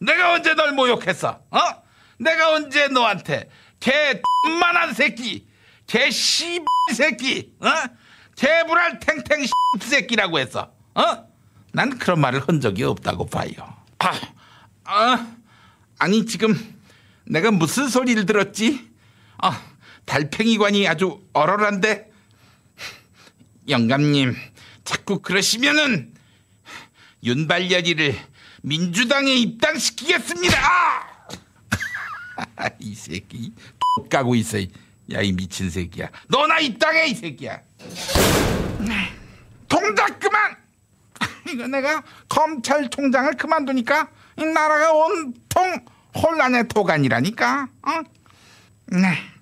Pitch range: 200-310 Hz